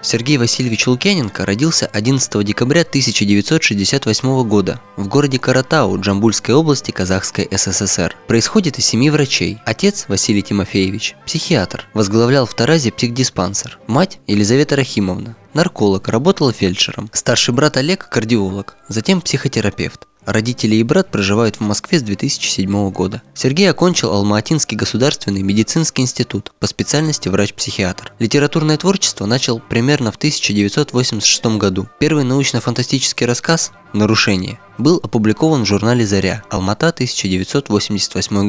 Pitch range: 100-135 Hz